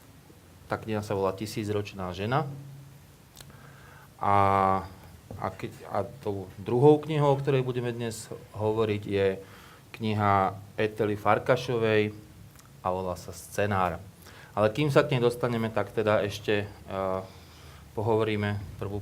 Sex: male